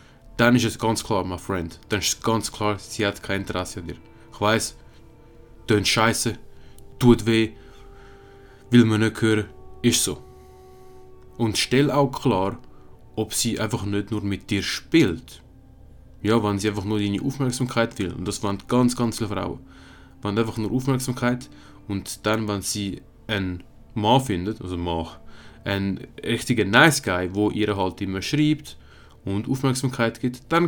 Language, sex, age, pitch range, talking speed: German, male, 20-39, 100-120 Hz, 165 wpm